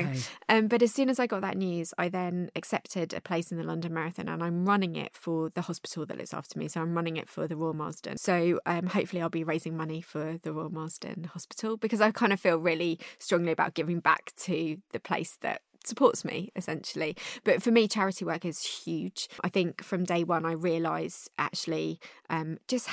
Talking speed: 215 wpm